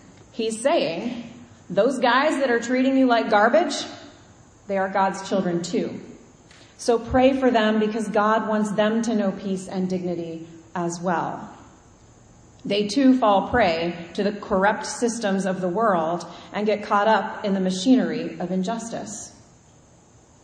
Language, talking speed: English, 145 wpm